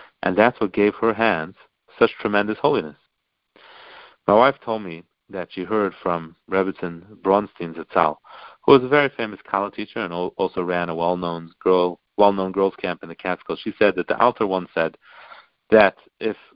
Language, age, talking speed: English, 50-69, 175 wpm